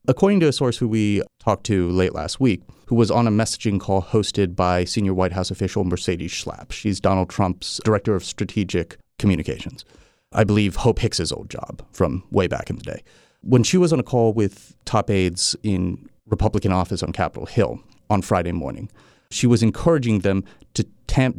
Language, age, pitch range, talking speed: English, 30-49, 95-115 Hz, 190 wpm